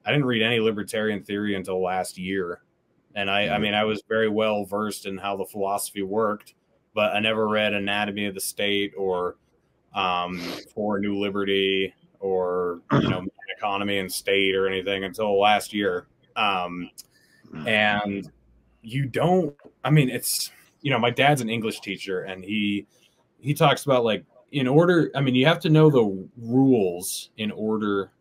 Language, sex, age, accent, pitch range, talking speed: English, male, 20-39, American, 95-110 Hz, 170 wpm